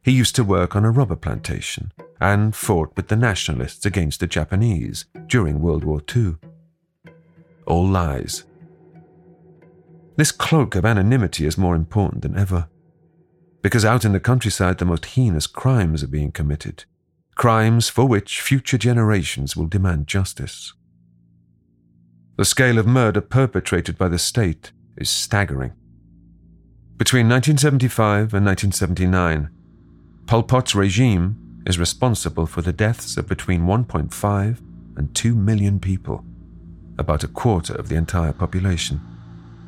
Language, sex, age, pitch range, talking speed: English, male, 40-59, 85-115 Hz, 130 wpm